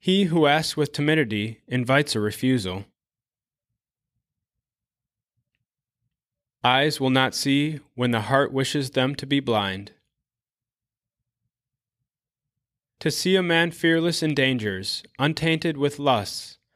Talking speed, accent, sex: 105 wpm, American, male